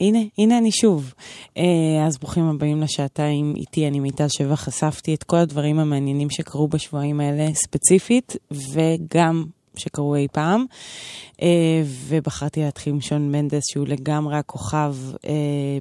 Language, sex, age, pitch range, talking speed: Hebrew, female, 20-39, 145-165 Hz, 135 wpm